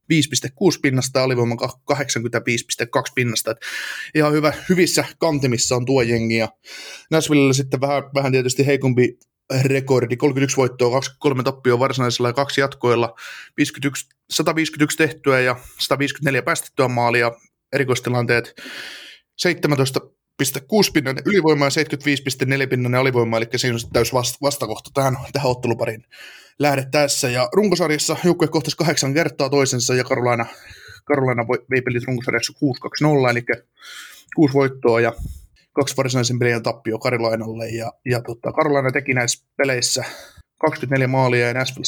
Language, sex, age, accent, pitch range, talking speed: Finnish, male, 20-39, native, 120-145 Hz, 135 wpm